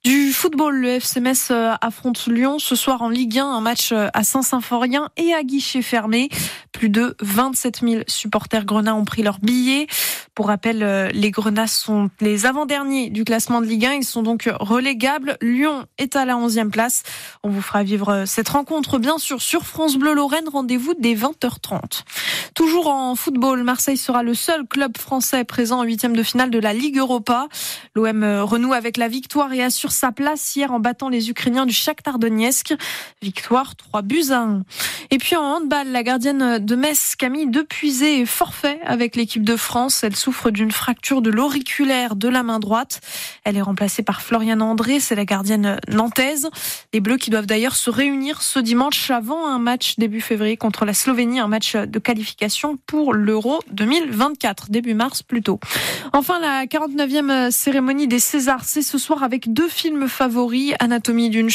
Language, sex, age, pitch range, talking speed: French, female, 20-39, 225-275 Hz, 180 wpm